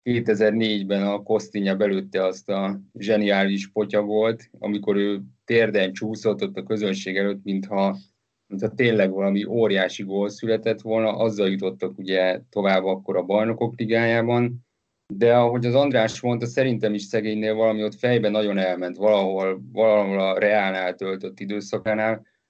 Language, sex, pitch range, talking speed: Hungarian, male, 100-115 Hz, 135 wpm